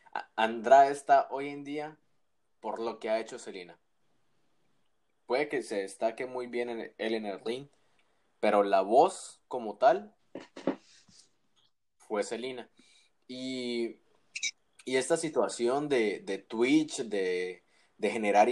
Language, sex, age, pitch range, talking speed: Spanish, male, 20-39, 105-130 Hz, 125 wpm